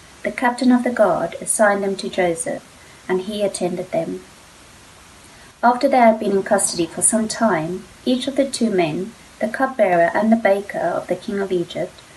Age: 30-49